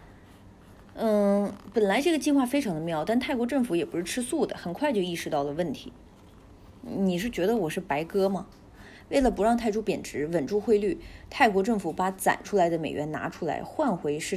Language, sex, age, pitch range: Chinese, female, 30-49, 150-220 Hz